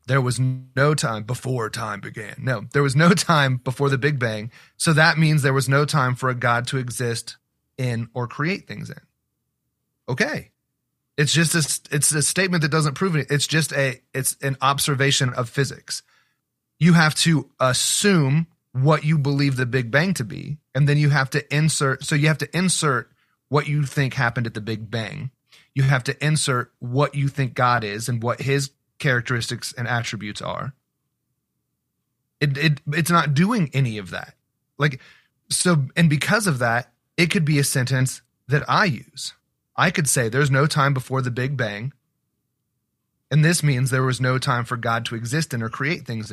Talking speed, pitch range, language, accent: 185 wpm, 125-150 Hz, English, American